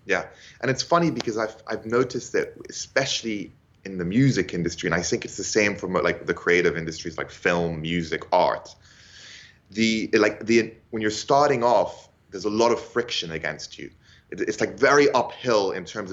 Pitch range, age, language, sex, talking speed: 100-130 Hz, 20-39, English, male, 190 wpm